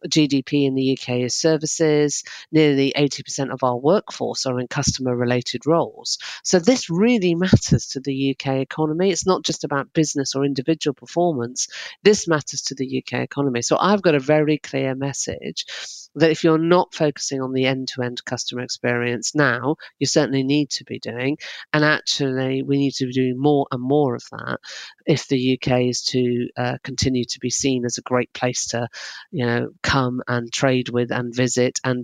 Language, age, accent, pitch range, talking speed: English, 40-59, British, 130-155 Hz, 180 wpm